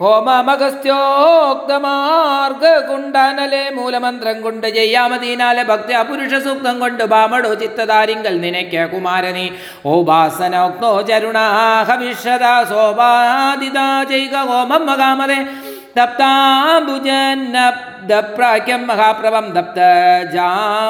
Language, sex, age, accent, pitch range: Malayalam, male, 50-69, native, 180-265 Hz